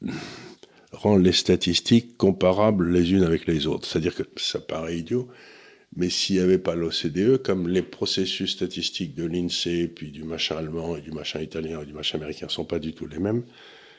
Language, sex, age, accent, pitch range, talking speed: French, male, 60-79, French, 85-120 Hz, 195 wpm